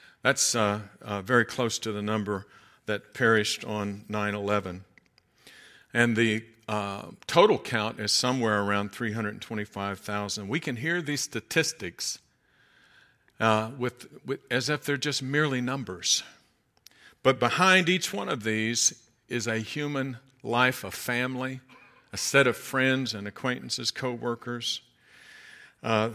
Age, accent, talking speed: 50-69, American, 120 wpm